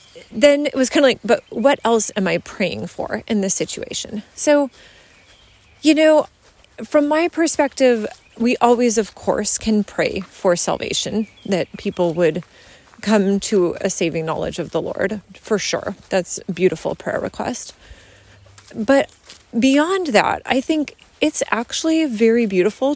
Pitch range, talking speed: 190-255 Hz, 150 wpm